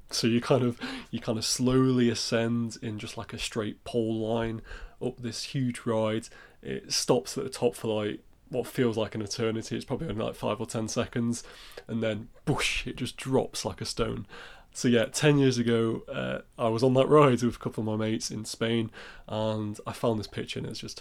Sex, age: male, 20-39